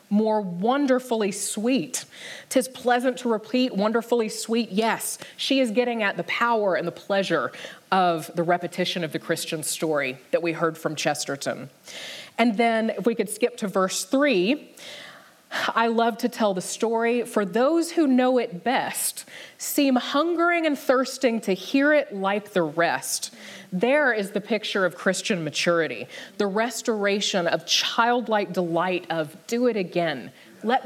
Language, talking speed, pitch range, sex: English, 155 wpm, 175-235 Hz, female